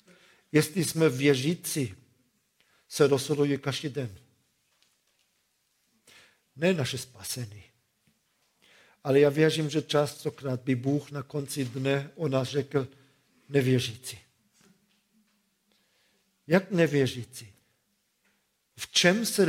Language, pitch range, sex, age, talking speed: Czech, 135-180 Hz, male, 50-69, 90 wpm